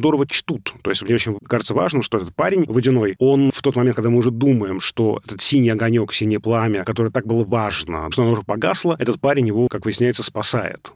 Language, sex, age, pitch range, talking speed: Russian, male, 30-49, 105-130 Hz, 220 wpm